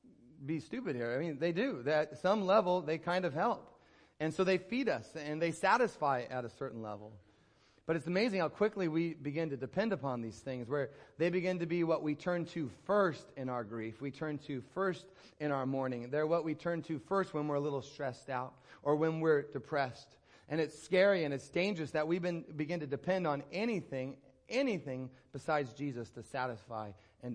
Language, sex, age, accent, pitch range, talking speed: English, male, 30-49, American, 135-175 Hz, 205 wpm